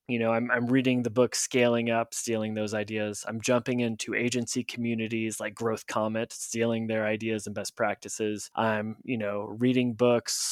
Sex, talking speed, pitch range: male, 175 wpm, 110-130 Hz